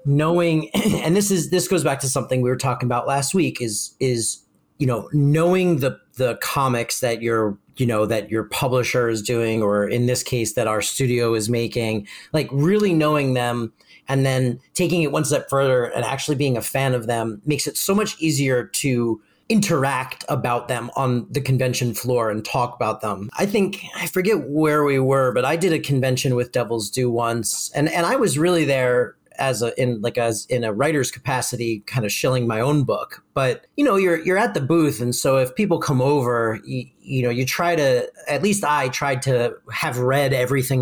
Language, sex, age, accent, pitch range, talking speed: English, male, 40-59, American, 120-155 Hz, 205 wpm